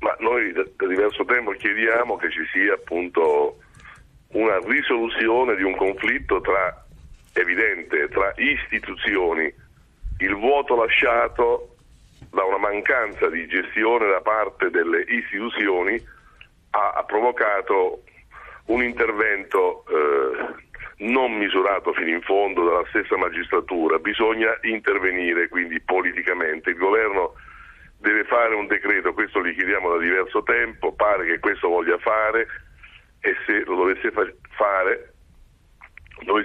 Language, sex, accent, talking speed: Italian, male, native, 115 wpm